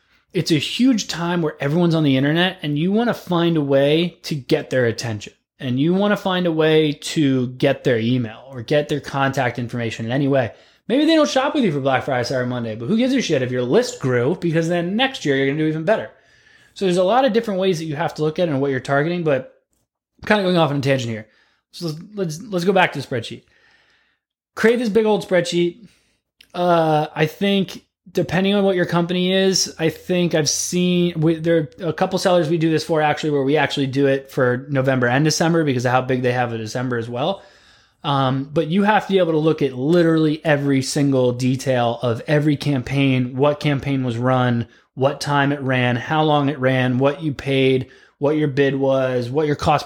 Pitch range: 130-175 Hz